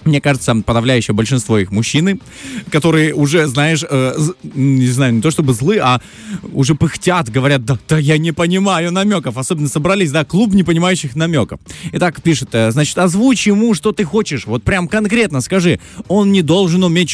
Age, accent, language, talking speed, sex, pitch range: 20-39, native, Russian, 170 wpm, male, 120-185 Hz